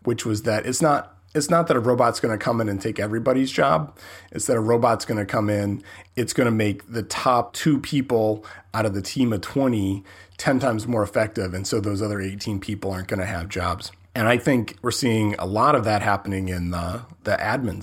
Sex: male